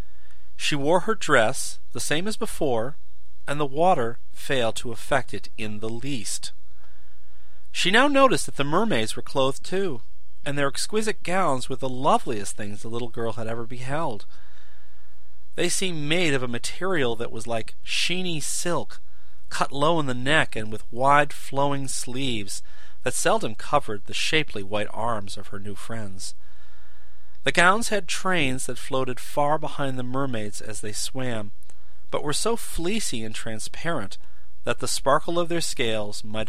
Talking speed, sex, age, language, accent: 165 wpm, male, 40-59, English, American